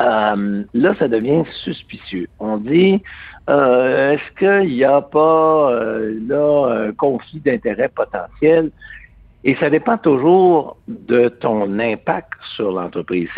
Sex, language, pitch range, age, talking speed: male, French, 110-165 Hz, 60-79, 125 wpm